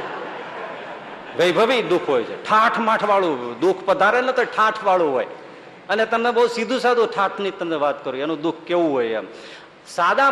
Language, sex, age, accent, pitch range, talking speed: Gujarati, male, 50-69, native, 150-230 Hz, 155 wpm